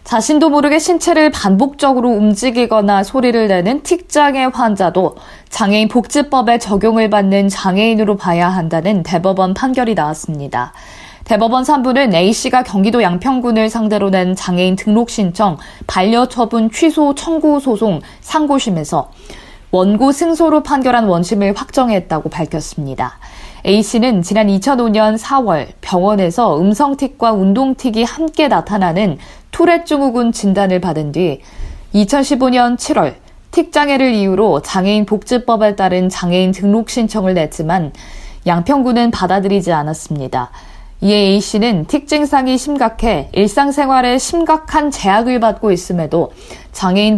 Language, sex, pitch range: Korean, female, 190-260 Hz